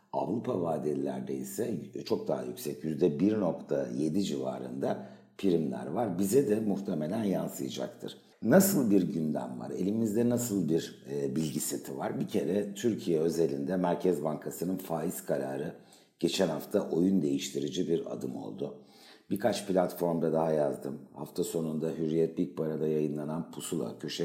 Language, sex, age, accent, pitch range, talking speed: Turkish, male, 60-79, native, 75-95 Hz, 125 wpm